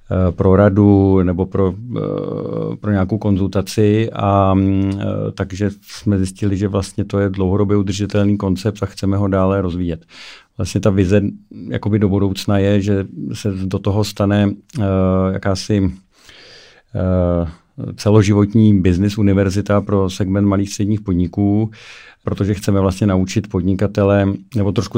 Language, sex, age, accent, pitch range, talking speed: Czech, male, 50-69, native, 95-105 Hz, 125 wpm